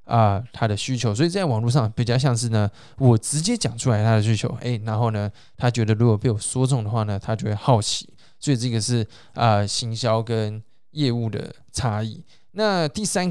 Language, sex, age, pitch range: Chinese, male, 20-39, 110-130 Hz